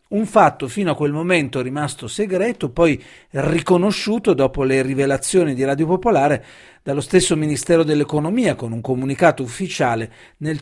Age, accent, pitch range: 40-59, native, 130-175 Hz